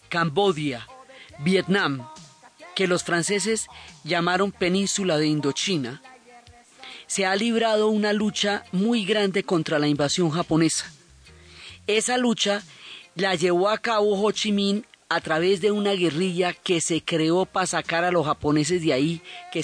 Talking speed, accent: 135 wpm, Colombian